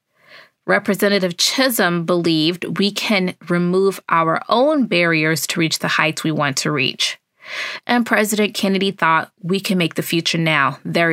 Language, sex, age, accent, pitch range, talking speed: English, female, 20-39, American, 175-220 Hz, 150 wpm